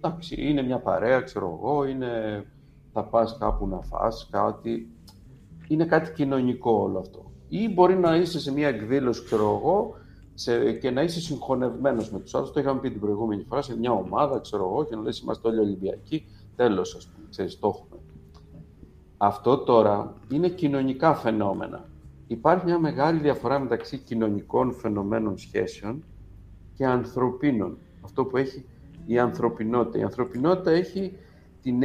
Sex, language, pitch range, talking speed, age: male, Greek, 100-140 Hz, 145 wpm, 60-79